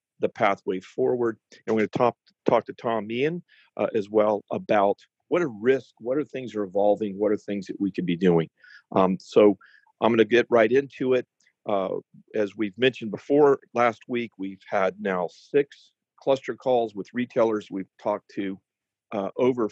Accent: American